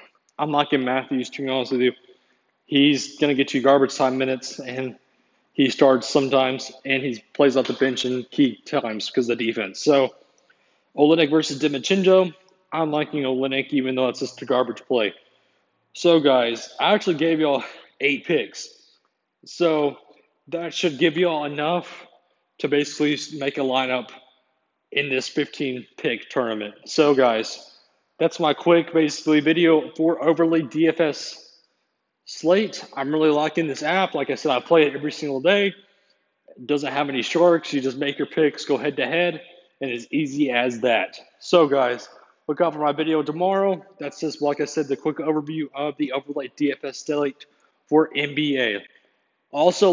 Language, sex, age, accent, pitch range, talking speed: English, male, 20-39, American, 135-165 Hz, 170 wpm